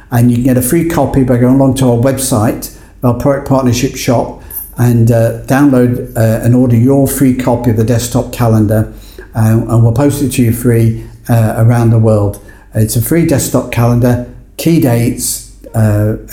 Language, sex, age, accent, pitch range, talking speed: English, male, 50-69, British, 110-125 Hz, 185 wpm